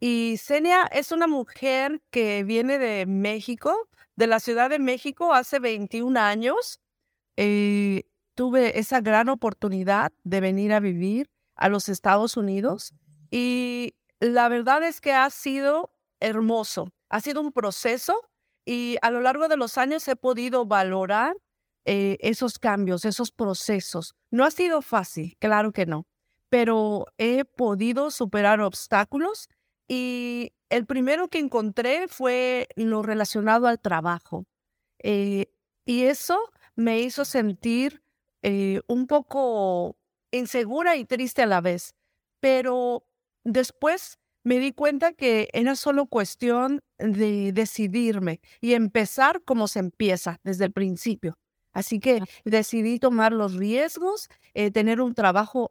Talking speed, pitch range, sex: 130 wpm, 205-260 Hz, female